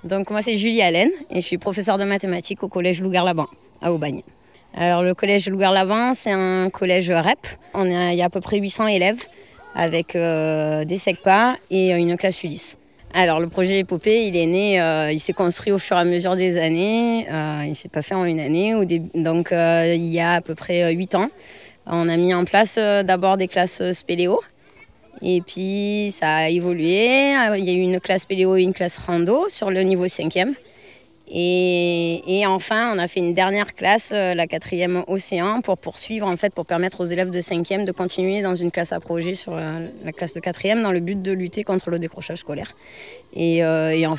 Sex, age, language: female, 20-39, French